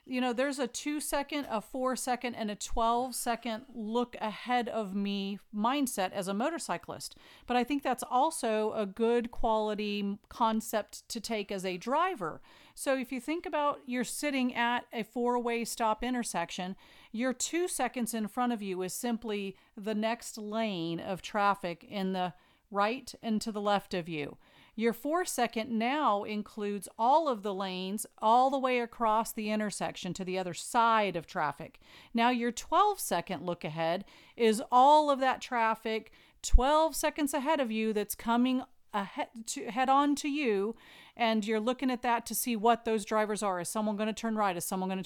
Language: English